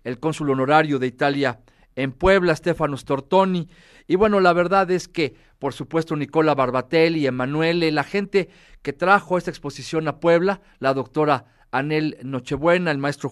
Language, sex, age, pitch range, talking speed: Spanish, male, 40-59, 140-175 Hz, 155 wpm